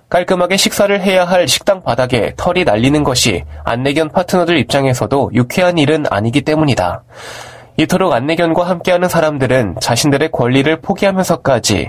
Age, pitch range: 20-39, 125-170 Hz